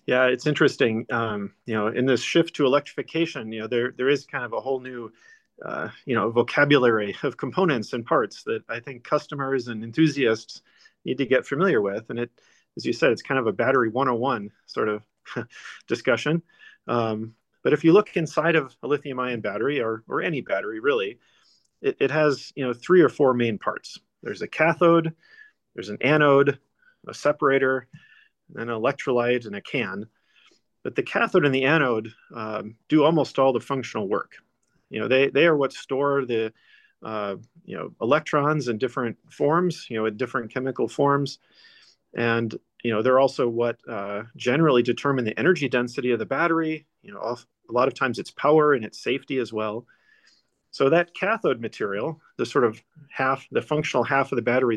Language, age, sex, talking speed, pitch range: English, 40-59, male, 185 wpm, 115-155 Hz